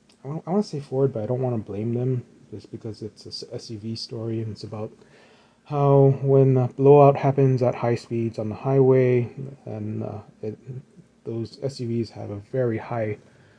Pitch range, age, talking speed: 115-135 Hz, 30-49, 175 wpm